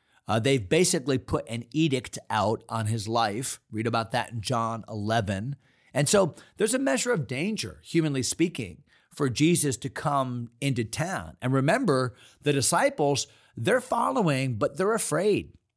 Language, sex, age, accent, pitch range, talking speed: English, male, 40-59, American, 115-150 Hz, 150 wpm